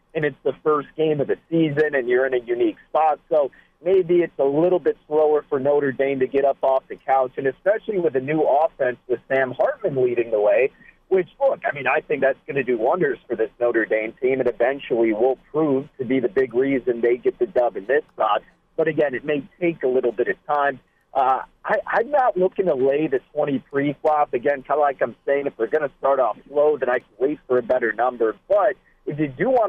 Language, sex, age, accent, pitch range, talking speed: English, male, 40-59, American, 135-180 Hz, 245 wpm